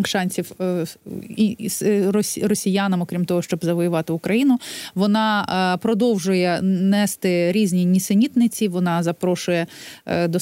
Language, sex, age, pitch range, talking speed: Ukrainian, female, 30-49, 185-220 Hz, 85 wpm